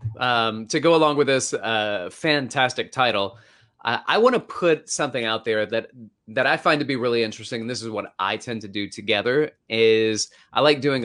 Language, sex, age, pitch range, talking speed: English, male, 30-49, 105-125 Hz, 205 wpm